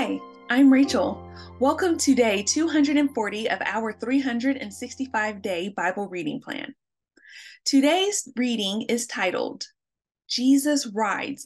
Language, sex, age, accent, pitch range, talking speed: English, female, 20-39, American, 210-275 Hz, 100 wpm